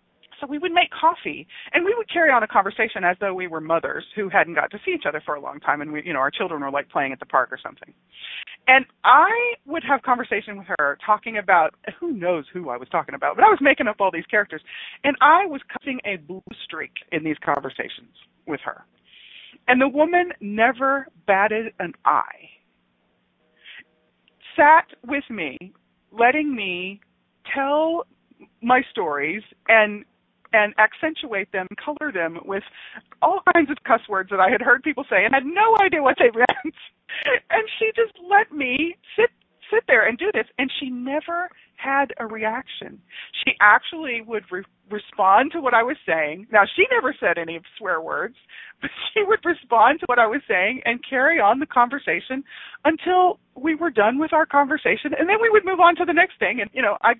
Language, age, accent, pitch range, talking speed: English, 40-59, American, 200-325 Hz, 195 wpm